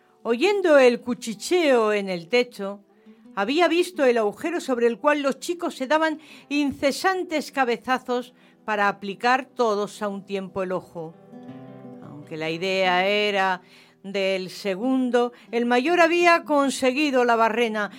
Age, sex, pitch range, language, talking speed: 40-59, female, 200-275 Hz, English, 130 wpm